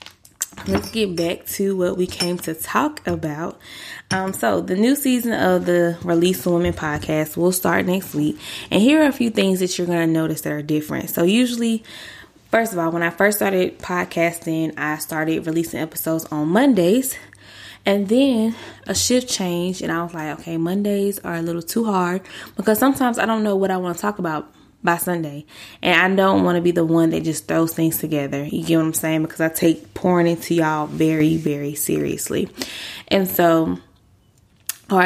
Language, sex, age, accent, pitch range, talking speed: English, female, 20-39, American, 160-205 Hz, 195 wpm